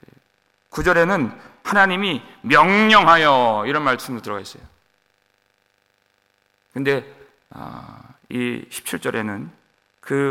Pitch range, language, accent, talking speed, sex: 100-145 Hz, English, Korean, 60 wpm, male